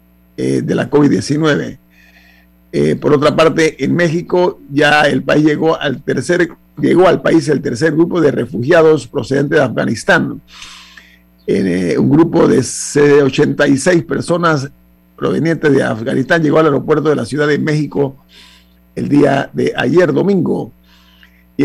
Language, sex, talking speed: Spanish, male, 140 wpm